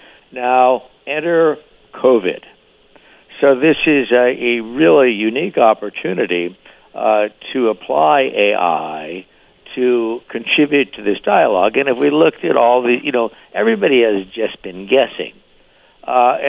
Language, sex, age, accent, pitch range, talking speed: English, male, 60-79, American, 100-125 Hz, 125 wpm